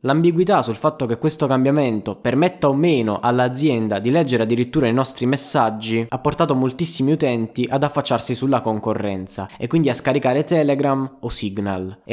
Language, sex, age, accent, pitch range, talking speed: Italian, male, 20-39, native, 115-145 Hz, 160 wpm